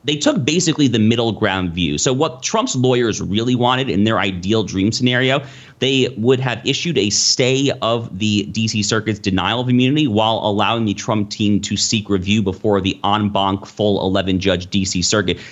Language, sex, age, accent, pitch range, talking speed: English, male, 30-49, American, 100-125 Hz, 185 wpm